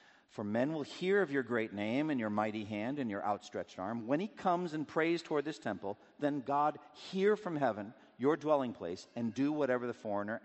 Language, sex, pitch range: English, male, 95-135 Hz